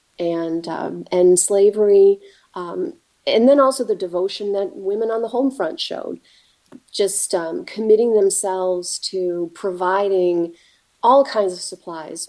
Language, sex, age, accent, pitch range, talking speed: English, female, 30-49, American, 170-215 Hz, 130 wpm